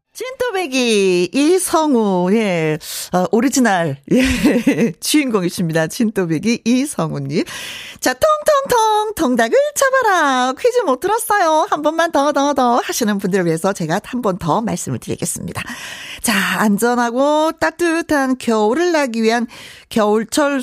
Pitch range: 195-310 Hz